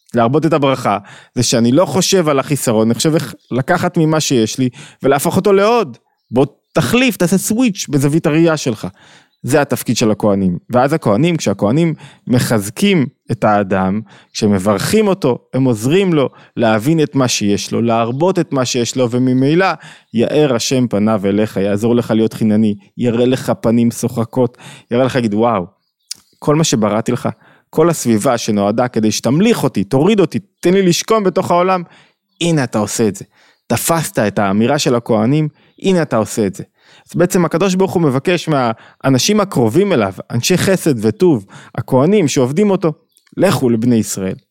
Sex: male